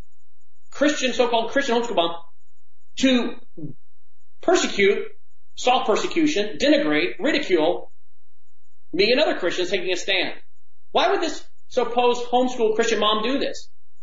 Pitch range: 175-255 Hz